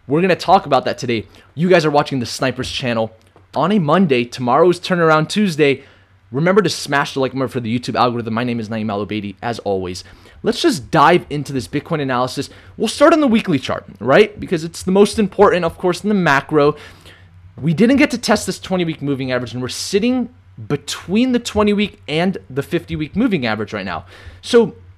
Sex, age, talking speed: male, 20-39, 210 wpm